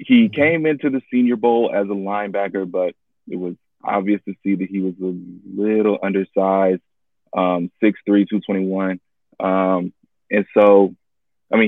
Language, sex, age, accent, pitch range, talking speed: English, male, 20-39, American, 95-105 Hz, 150 wpm